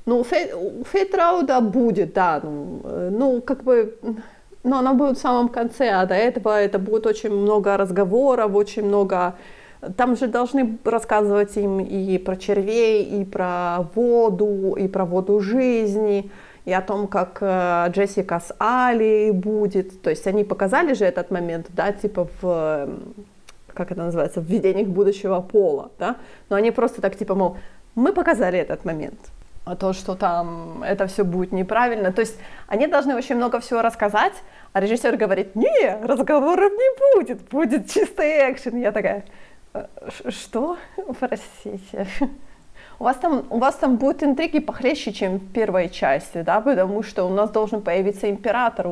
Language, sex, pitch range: Ukrainian, female, 195-245 Hz